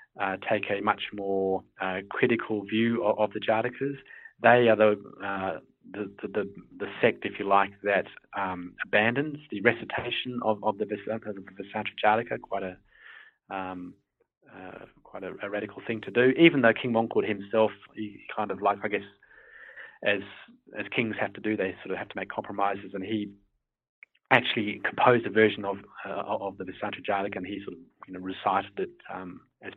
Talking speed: 180 wpm